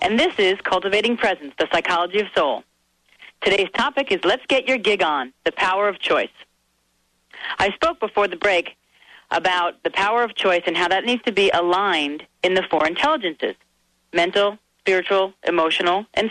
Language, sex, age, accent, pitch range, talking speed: English, female, 40-59, American, 170-225 Hz, 170 wpm